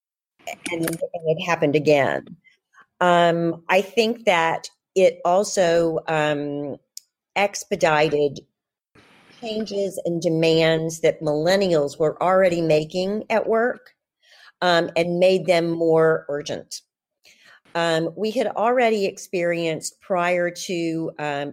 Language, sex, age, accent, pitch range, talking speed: English, female, 40-59, American, 155-190 Hz, 100 wpm